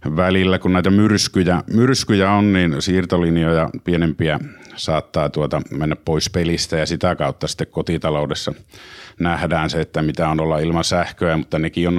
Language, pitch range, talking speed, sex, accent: Finnish, 85-95 Hz, 140 wpm, male, native